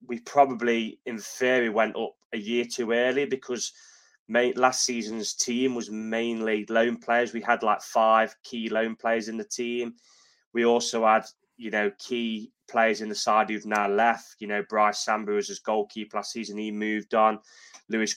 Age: 20-39